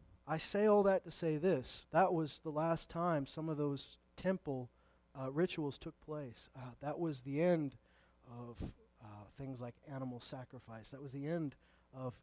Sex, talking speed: male, 175 wpm